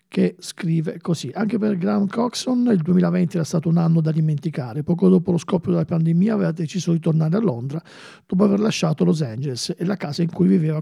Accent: native